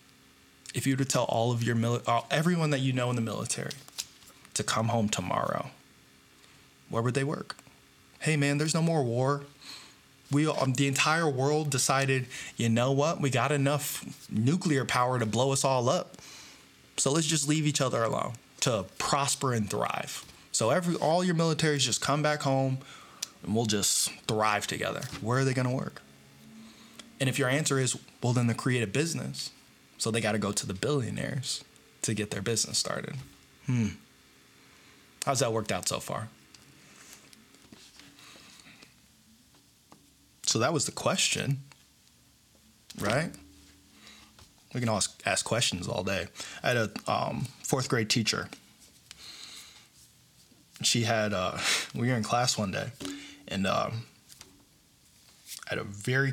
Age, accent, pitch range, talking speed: 20-39, American, 105-140 Hz, 155 wpm